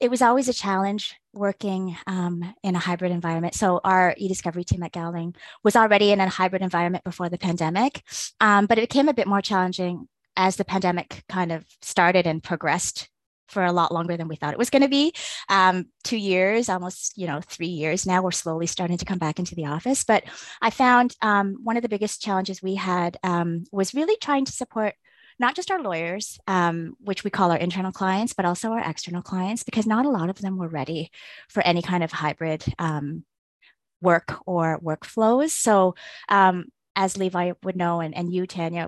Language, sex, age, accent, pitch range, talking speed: English, female, 20-39, American, 170-210 Hz, 205 wpm